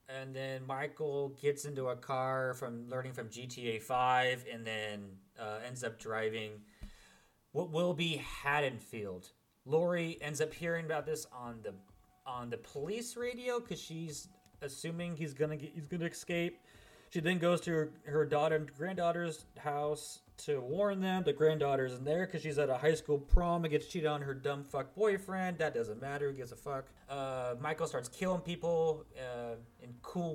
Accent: American